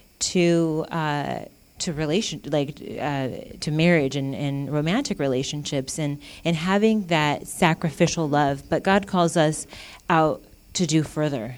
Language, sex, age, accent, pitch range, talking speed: English, female, 30-49, American, 140-170 Hz, 135 wpm